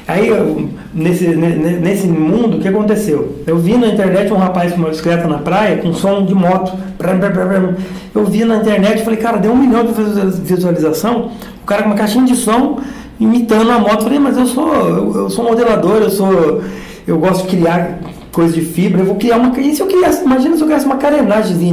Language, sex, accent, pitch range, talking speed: Portuguese, male, Brazilian, 185-240 Hz, 225 wpm